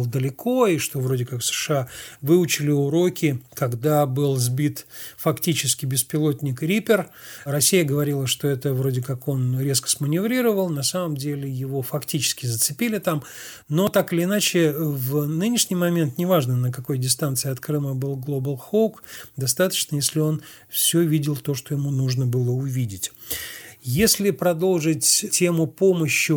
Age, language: 40-59, Russian